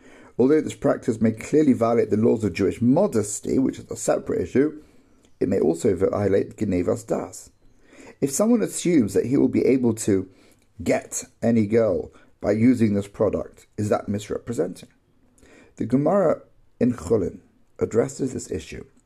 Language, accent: English, British